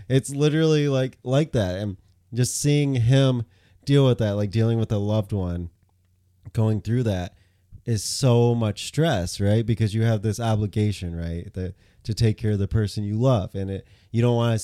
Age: 20-39